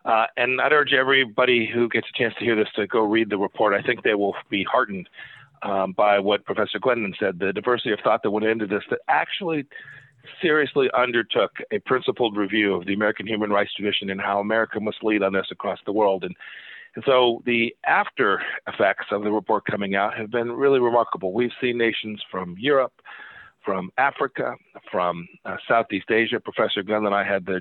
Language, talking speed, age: English, 200 wpm, 50-69